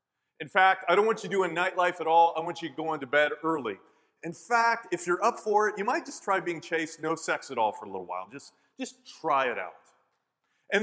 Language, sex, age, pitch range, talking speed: English, male, 30-49, 160-215 Hz, 245 wpm